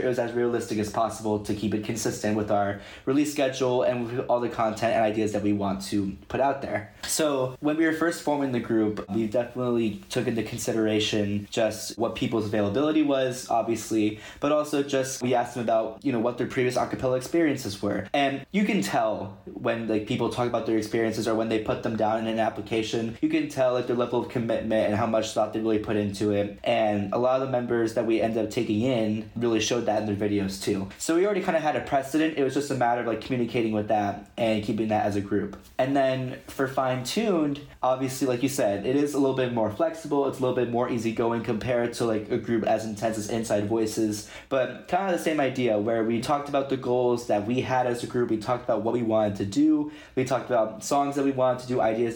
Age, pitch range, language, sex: 20-39, 110-130 Hz, English, male